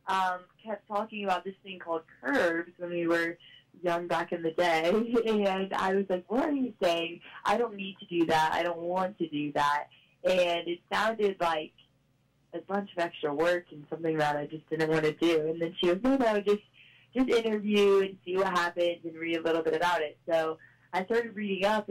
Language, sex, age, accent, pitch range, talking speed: English, female, 20-39, American, 160-195 Hz, 220 wpm